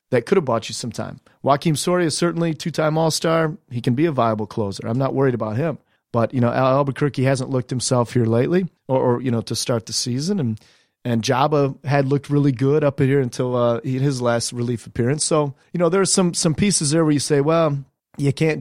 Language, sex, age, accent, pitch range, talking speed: English, male, 30-49, American, 115-145 Hz, 230 wpm